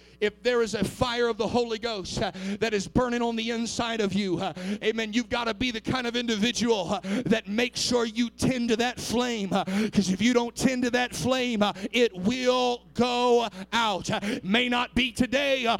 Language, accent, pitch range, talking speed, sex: English, American, 215-255 Hz, 190 wpm, male